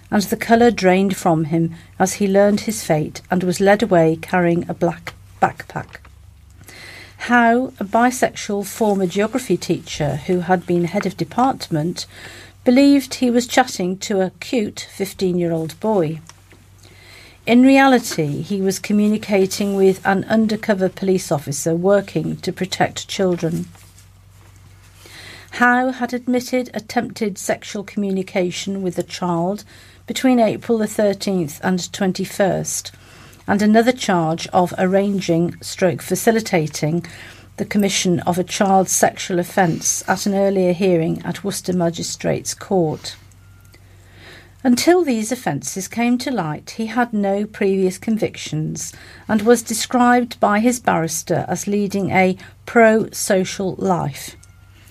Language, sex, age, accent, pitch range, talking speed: English, female, 50-69, British, 160-210 Hz, 125 wpm